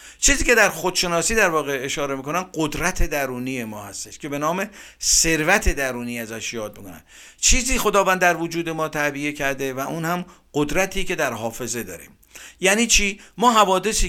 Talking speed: 165 wpm